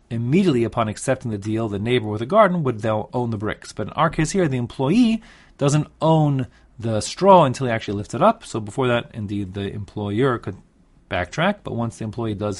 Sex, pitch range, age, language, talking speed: male, 105-140 Hz, 30-49, English, 210 wpm